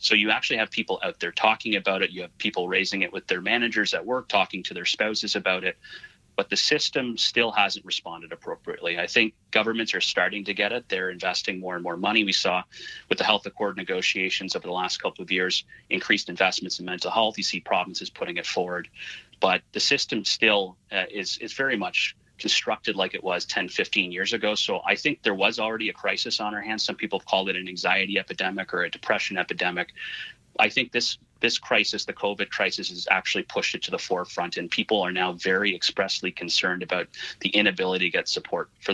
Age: 30-49